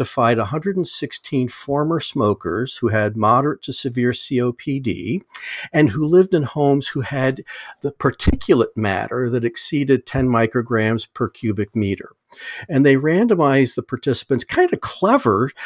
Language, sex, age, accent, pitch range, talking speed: English, male, 50-69, American, 120-150 Hz, 135 wpm